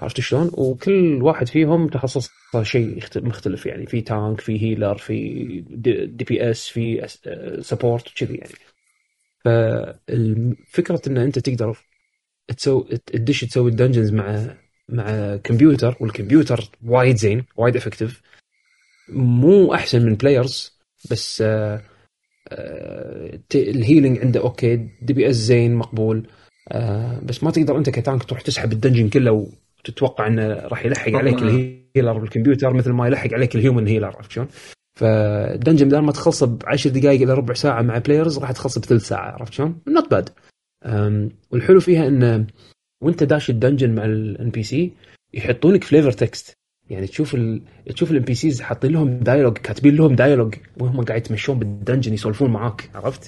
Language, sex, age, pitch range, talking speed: Arabic, male, 30-49, 110-140 Hz, 145 wpm